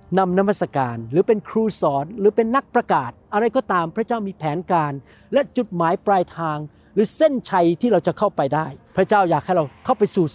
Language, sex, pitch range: Thai, male, 165-225 Hz